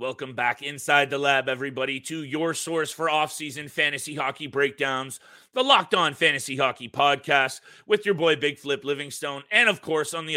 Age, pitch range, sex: 30-49, 135-190 Hz, male